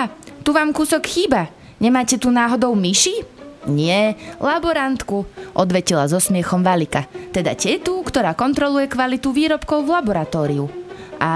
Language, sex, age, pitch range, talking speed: Slovak, female, 20-39, 175-240 Hz, 120 wpm